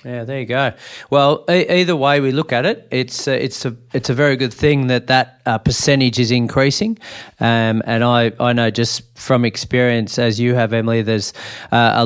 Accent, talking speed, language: Australian, 210 wpm, English